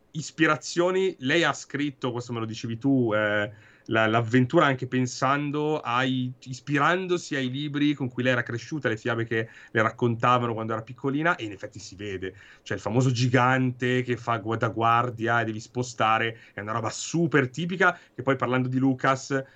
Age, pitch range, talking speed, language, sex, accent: 30-49, 110-135 Hz, 175 wpm, Italian, male, native